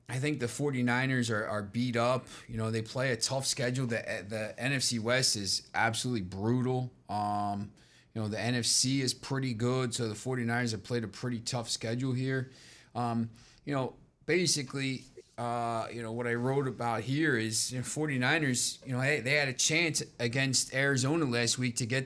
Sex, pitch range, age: male, 115-135 Hz, 30-49